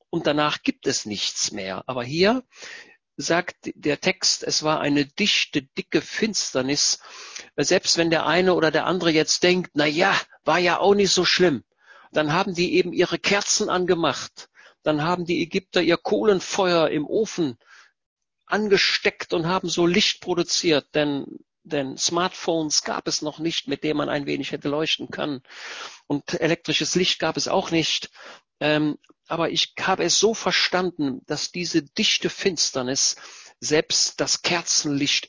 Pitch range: 130-175 Hz